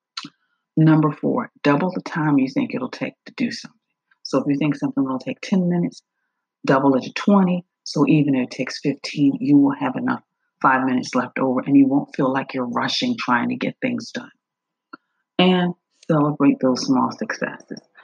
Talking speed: 185 wpm